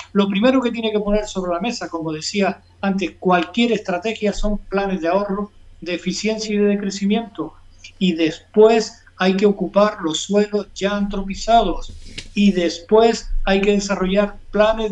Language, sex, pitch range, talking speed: Spanish, male, 170-205 Hz, 155 wpm